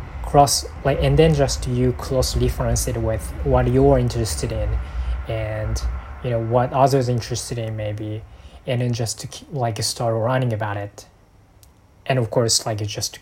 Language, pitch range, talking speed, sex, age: English, 100-125 Hz, 175 wpm, male, 20-39